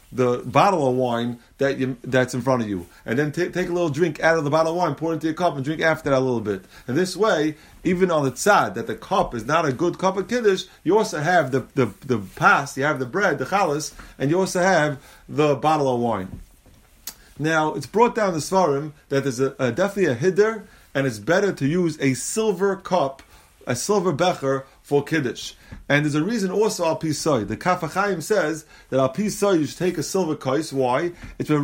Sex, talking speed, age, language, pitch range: male, 235 wpm, 30-49, English, 135-185 Hz